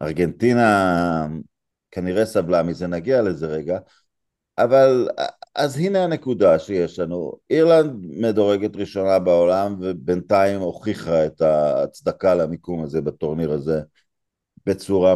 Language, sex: Hebrew, male